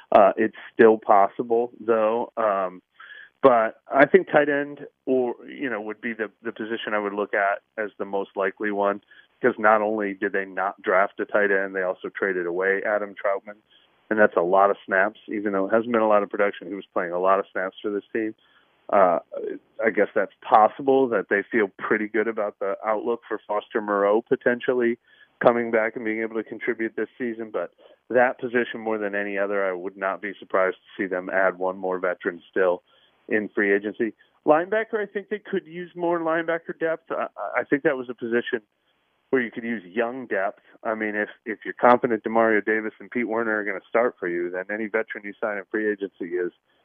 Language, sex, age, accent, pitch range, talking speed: English, male, 30-49, American, 100-125 Hz, 210 wpm